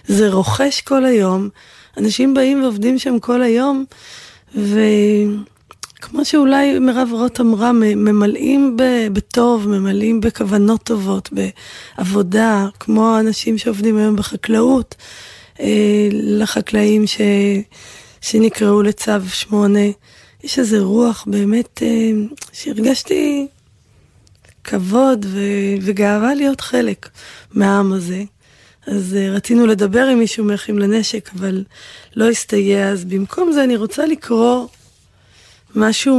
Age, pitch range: 20-39, 200-245 Hz